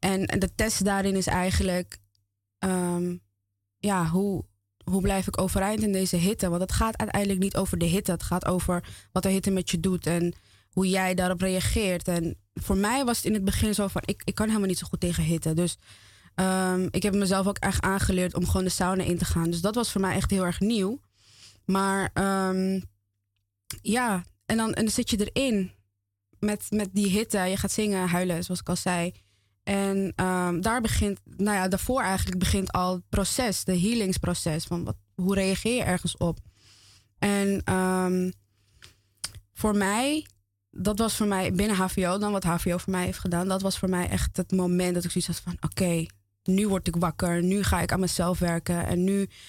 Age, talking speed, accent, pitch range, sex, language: 20-39, 200 wpm, Dutch, 165-195 Hz, female, Dutch